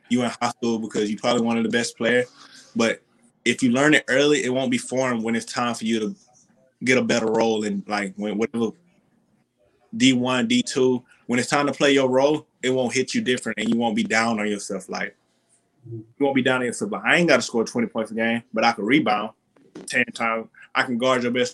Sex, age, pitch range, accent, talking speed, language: male, 20-39, 115-135 Hz, American, 235 wpm, English